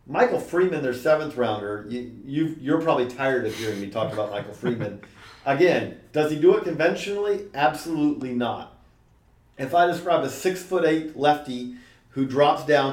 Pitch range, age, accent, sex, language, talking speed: 125-150 Hz, 40-59, American, male, English, 165 wpm